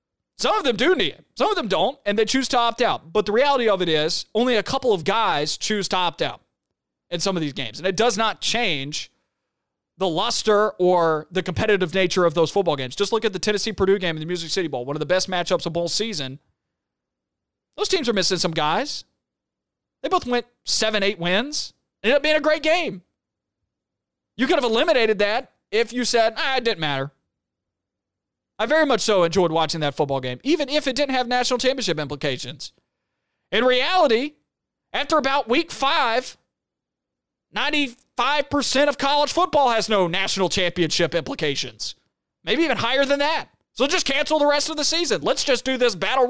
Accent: American